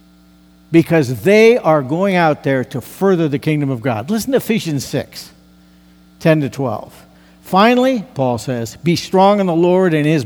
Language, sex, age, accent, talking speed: English, male, 60-79, American, 170 wpm